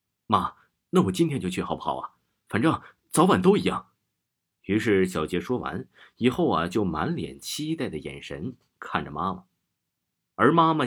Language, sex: Chinese, male